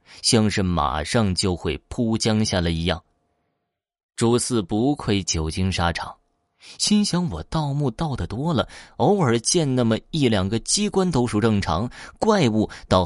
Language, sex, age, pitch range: Chinese, male, 20-39, 90-130 Hz